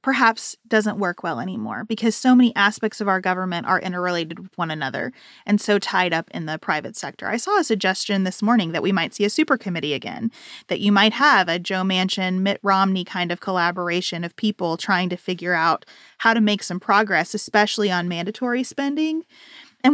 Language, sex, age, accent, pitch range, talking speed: English, female, 30-49, American, 190-245 Hz, 200 wpm